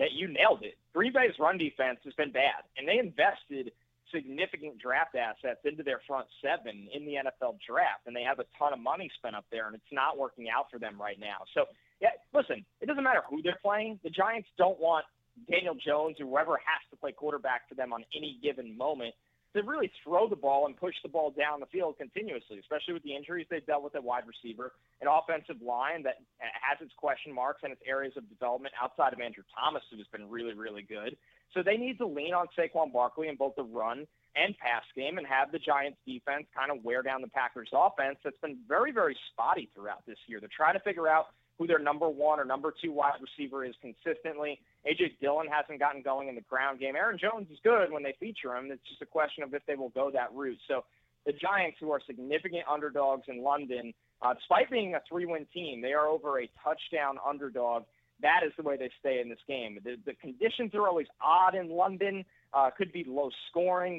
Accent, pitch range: American, 135-170 Hz